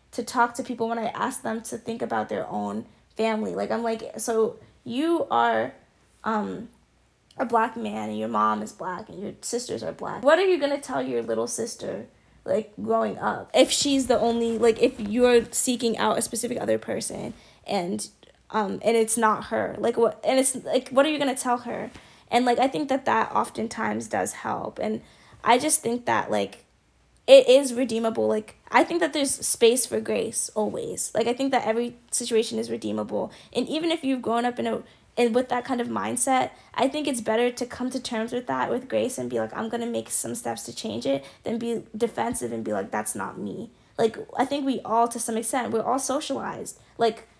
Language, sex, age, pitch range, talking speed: English, female, 10-29, 220-255 Hz, 215 wpm